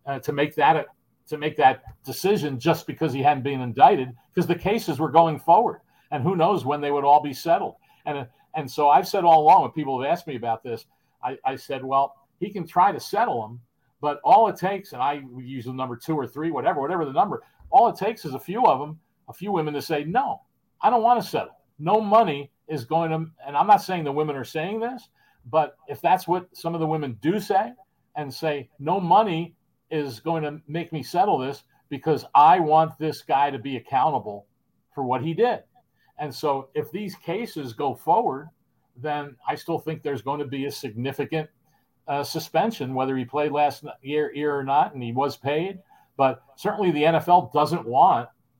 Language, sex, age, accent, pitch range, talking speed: English, male, 50-69, American, 135-170 Hz, 215 wpm